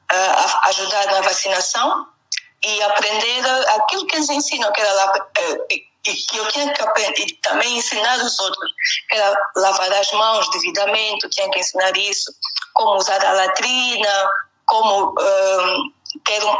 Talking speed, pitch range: 150 wpm, 195-270 Hz